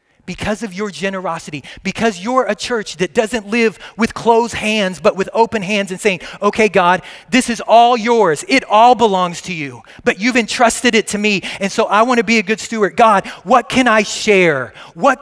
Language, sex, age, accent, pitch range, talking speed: English, male, 30-49, American, 205-245 Hz, 205 wpm